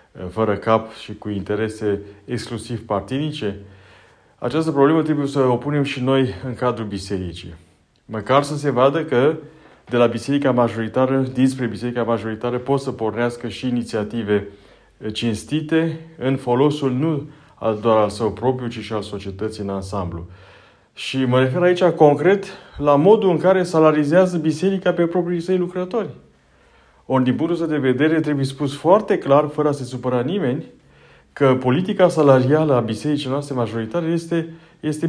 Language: Romanian